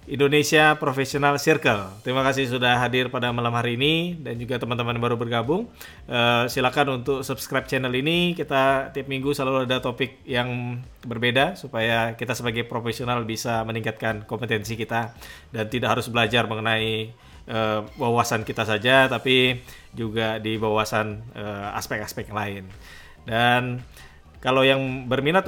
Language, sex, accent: English, male, Indonesian